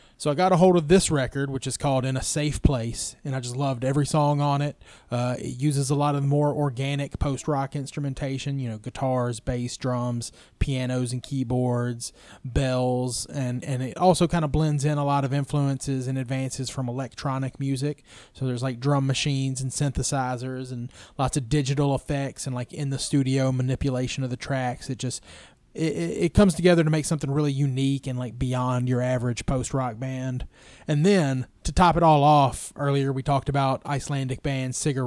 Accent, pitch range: American, 125-145 Hz